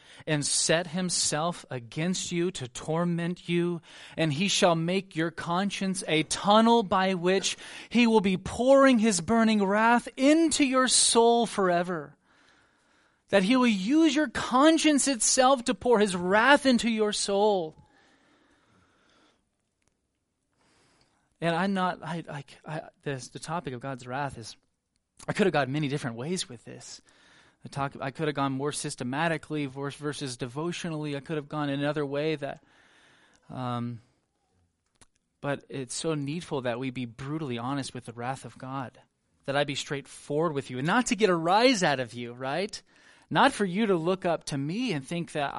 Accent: American